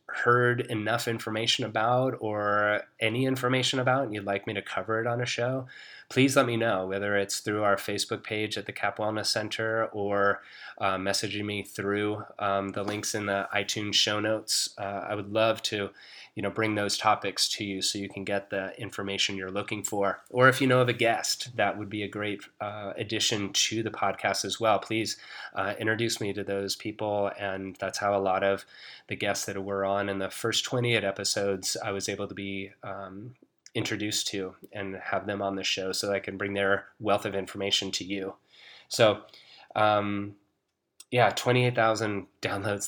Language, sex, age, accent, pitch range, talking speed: English, male, 20-39, American, 100-110 Hz, 195 wpm